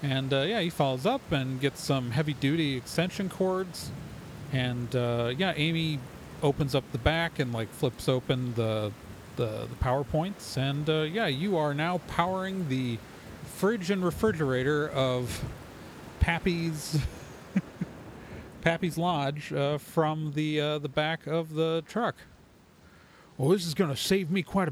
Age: 40-59